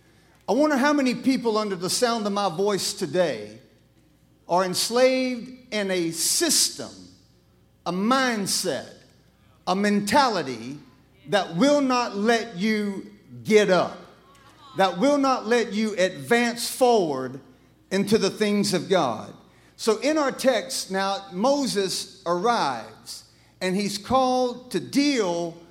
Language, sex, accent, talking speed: English, male, American, 120 wpm